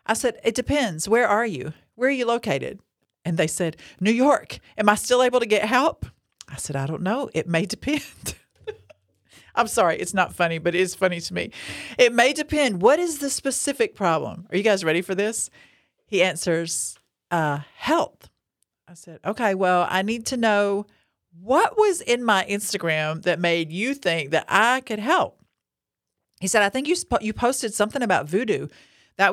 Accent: American